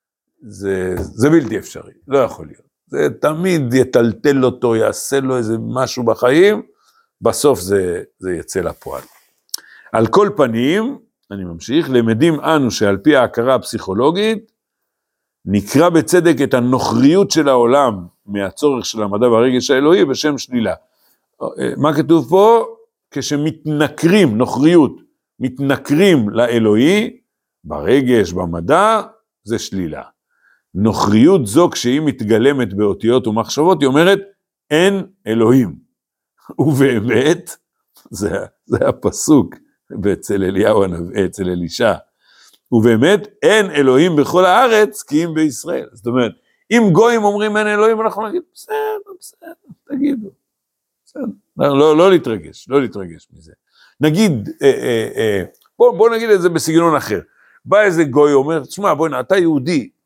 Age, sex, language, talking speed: 60-79, male, Hebrew, 120 wpm